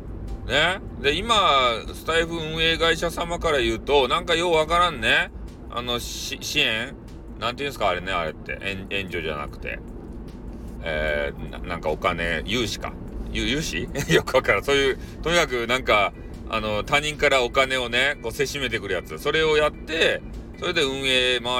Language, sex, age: Japanese, male, 40-59